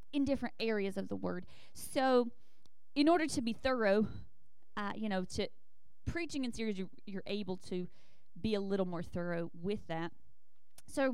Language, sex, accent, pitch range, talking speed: English, female, American, 195-245 Hz, 165 wpm